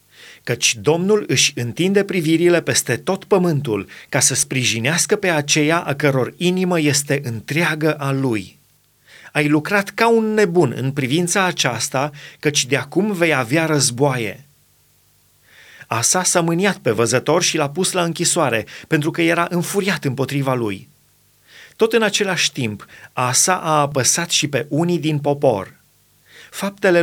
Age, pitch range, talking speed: 30-49, 135-175 Hz, 140 wpm